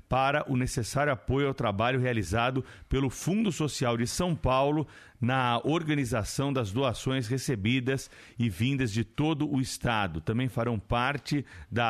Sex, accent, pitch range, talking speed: male, Brazilian, 120-145 Hz, 140 wpm